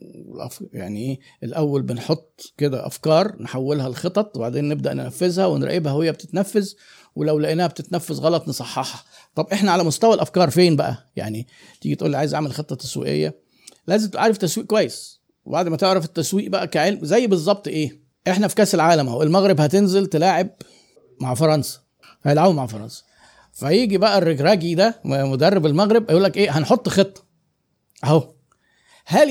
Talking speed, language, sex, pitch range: 150 wpm, Arabic, male, 150-195 Hz